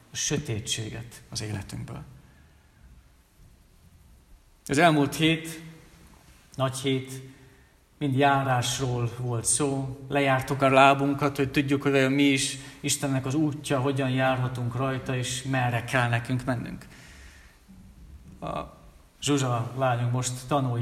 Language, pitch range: Hungarian, 120-150 Hz